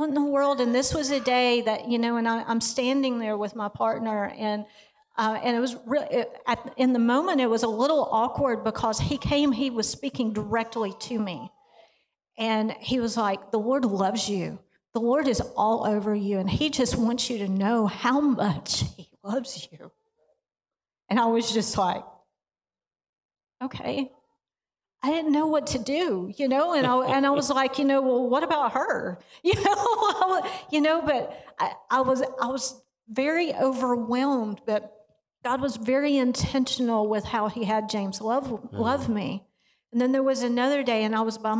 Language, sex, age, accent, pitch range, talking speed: English, female, 50-69, American, 215-265 Hz, 190 wpm